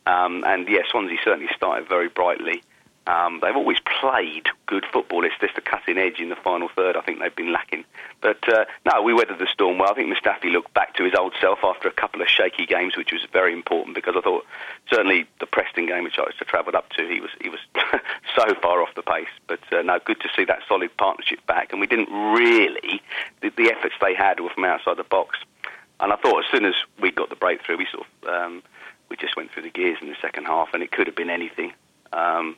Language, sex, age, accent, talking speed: English, male, 40-59, British, 245 wpm